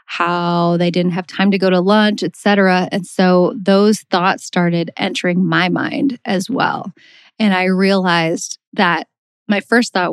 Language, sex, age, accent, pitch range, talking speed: English, female, 20-39, American, 185-225 Hz, 165 wpm